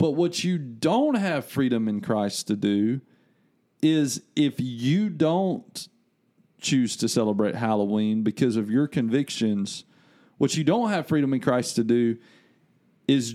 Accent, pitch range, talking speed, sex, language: American, 115-145 Hz, 145 wpm, male, English